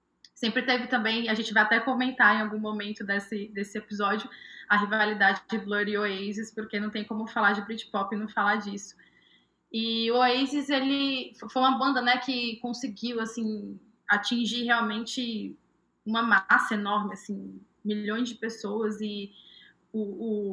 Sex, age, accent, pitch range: female, 20-39, Brazilian, 205-235 Hz